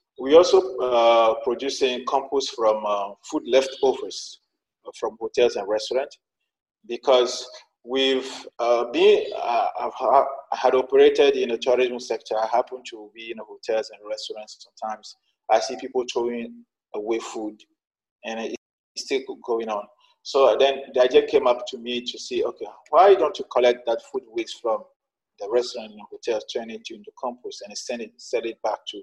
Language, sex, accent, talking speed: English, male, Nigerian, 165 wpm